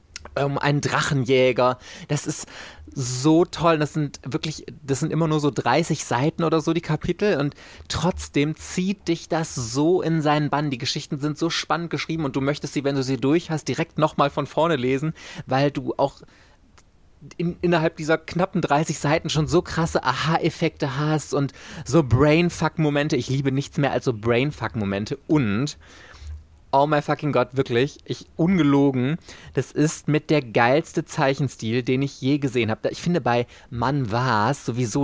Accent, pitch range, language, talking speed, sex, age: German, 130-155 Hz, German, 175 wpm, male, 30-49